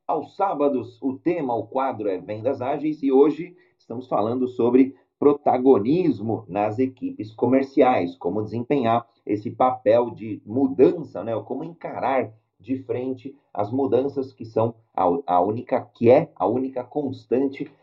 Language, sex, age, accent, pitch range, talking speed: Portuguese, male, 40-59, Brazilian, 115-145 Hz, 140 wpm